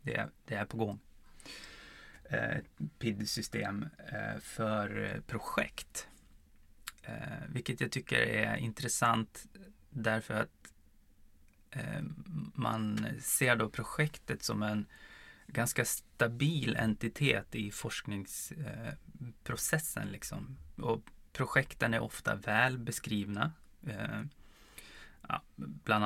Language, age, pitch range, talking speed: Swedish, 20-39, 100-125 Hz, 80 wpm